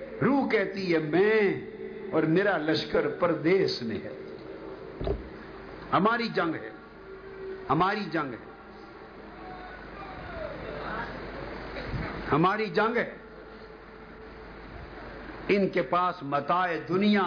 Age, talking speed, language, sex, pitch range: 60-79, 85 wpm, Urdu, male, 155-200 Hz